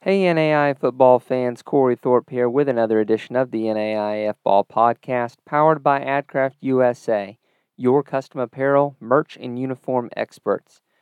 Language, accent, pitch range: English, American, 120-140 Hz